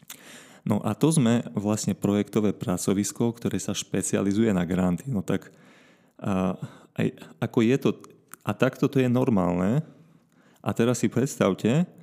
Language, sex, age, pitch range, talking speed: Slovak, male, 30-49, 100-125 Hz, 140 wpm